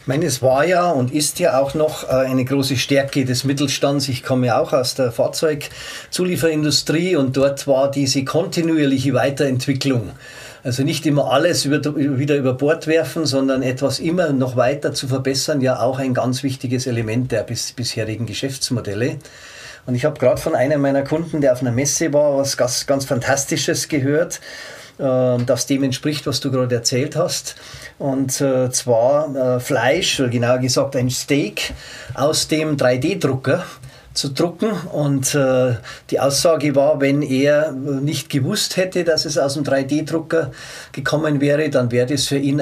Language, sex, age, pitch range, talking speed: German, male, 40-59, 130-150 Hz, 155 wpm